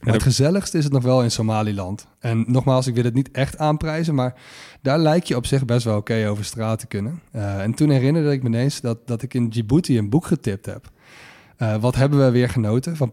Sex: male